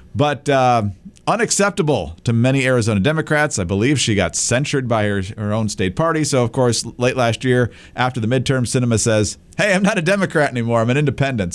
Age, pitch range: 40-59, 110-150 Hz